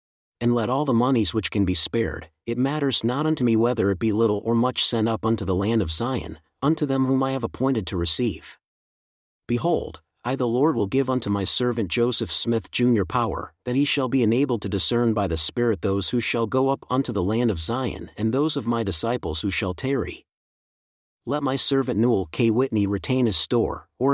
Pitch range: 100-130 Hz